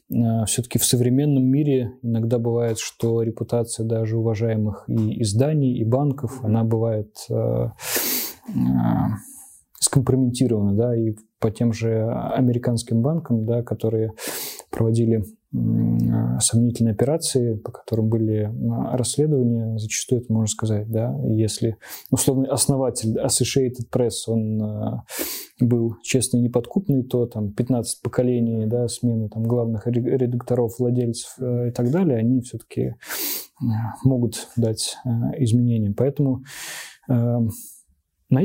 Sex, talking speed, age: male, 110 wpm, 20-39